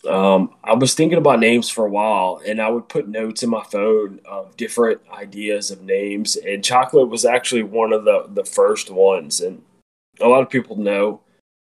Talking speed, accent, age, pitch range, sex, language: 195 wpm, American, 20-39, 100-115 Hz, male, English